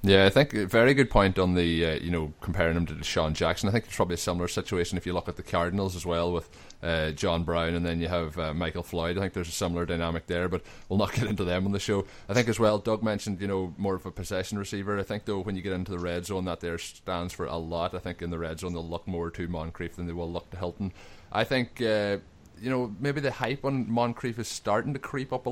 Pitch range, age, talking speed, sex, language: 85-100 Hz, 20-39, 285 wpm, male, English